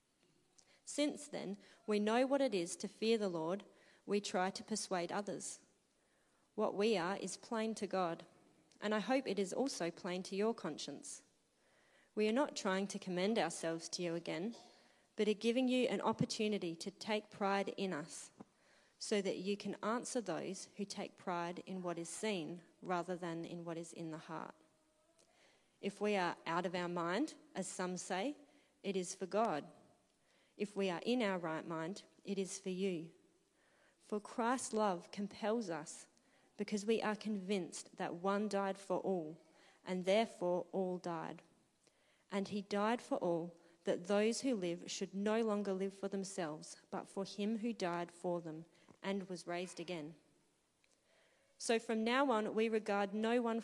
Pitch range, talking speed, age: 180-220 Hz, 170 wpm, 30-49